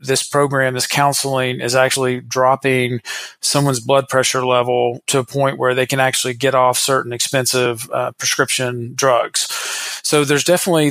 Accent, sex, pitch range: American, male, 125-140 Hz